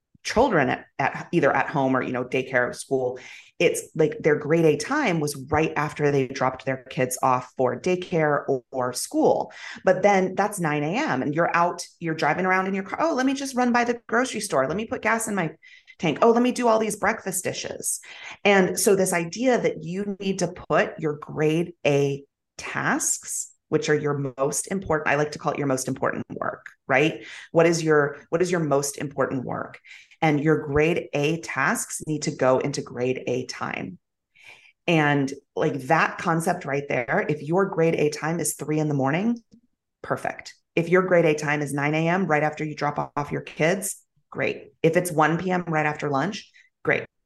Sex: female